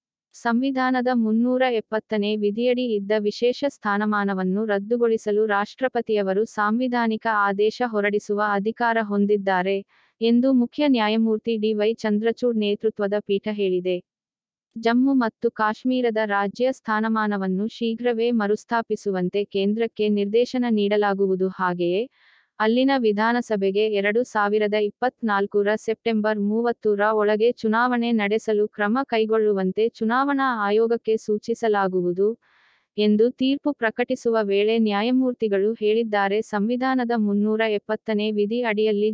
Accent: native